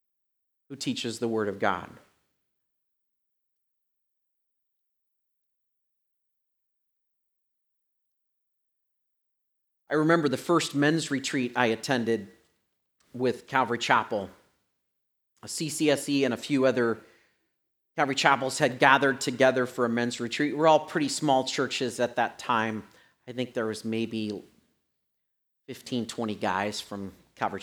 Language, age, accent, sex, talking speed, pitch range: English, 40-59, American, male, 110 wpm, 110-150 Hz